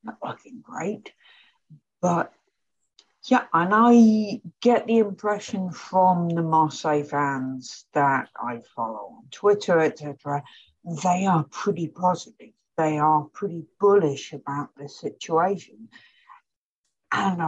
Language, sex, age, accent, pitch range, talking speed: English, female, 60-79, British, 140-180 Hz, 110 wpm